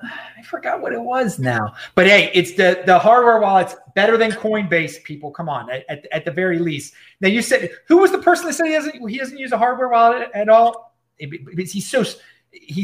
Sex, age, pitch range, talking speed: male, 30-49, 130-200 Hz, 215 wpm